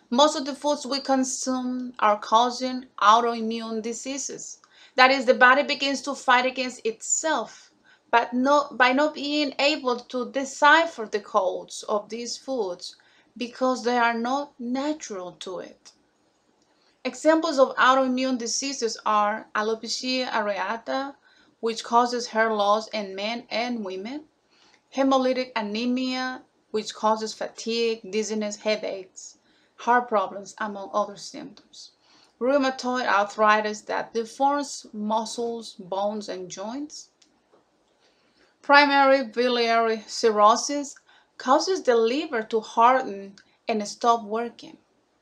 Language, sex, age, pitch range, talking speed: Spanish, female, 30-49, 220-275 Hz, 115 wpm